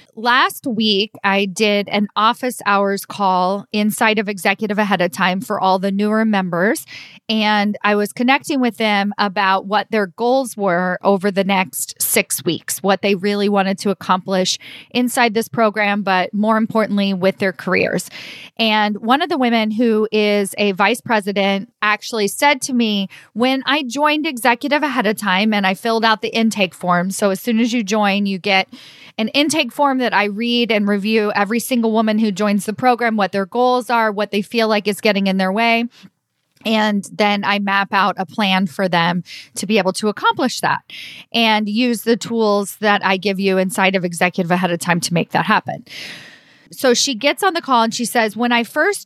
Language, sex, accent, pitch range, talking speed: English, female, American, 195-230 Hz, 195 wpm